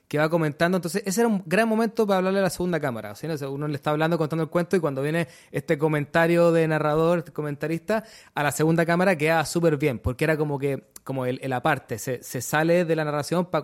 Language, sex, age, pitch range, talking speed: Spanish, male, 20-39, 135-165 Hz, 240 wpm